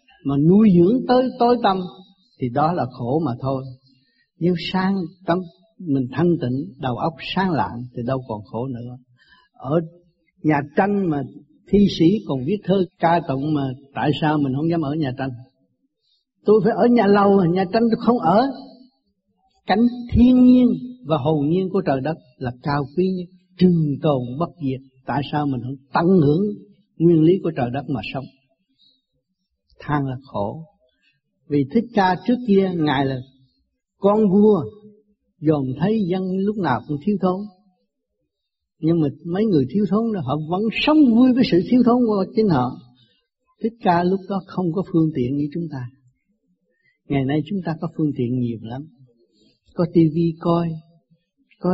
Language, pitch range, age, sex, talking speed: Vietnamese, 140-200 Hz, 60-79, male, 175 wpm